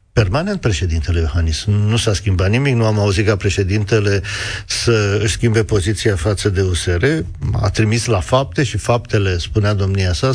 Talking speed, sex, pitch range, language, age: 160 wpm, male, 100-115 Hz, Romanian, 50-69